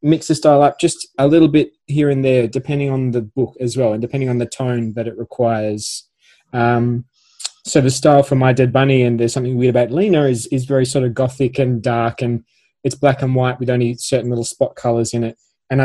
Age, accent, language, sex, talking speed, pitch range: 20-39, Australian, English, male, 230 wpm, 120-140 Hz